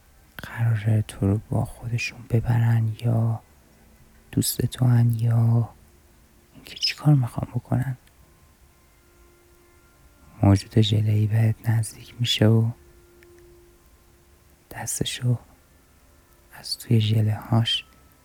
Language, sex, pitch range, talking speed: Persian, male, 75-120 Hz, 80 wpm